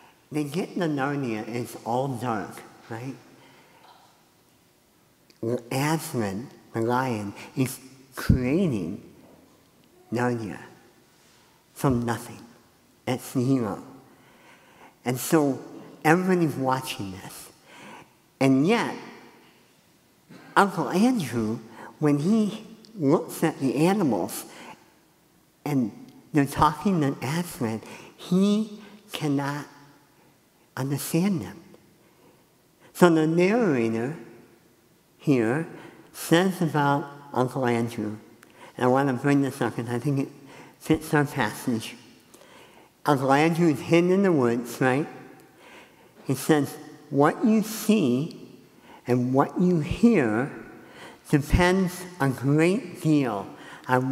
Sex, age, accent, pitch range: male, 50-69, American, 125-165 Hz